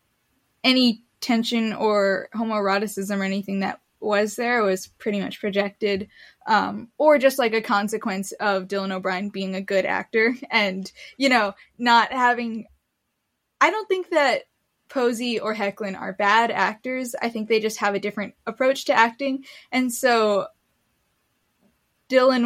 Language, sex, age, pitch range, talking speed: English, female, 10-29, 195-230 Hz, 145 wpm